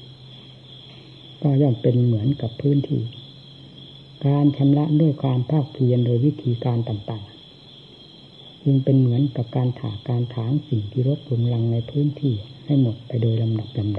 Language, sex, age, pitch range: Thai, female, 60-79, 125-145 Hz